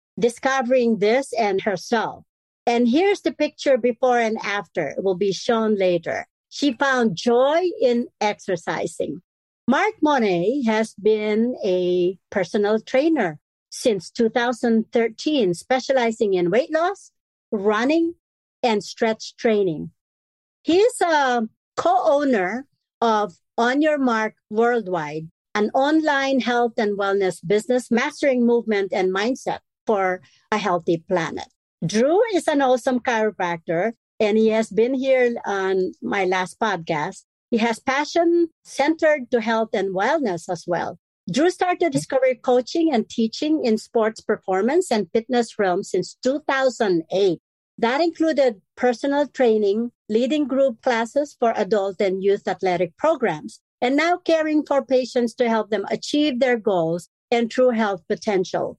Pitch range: 200-270 Hz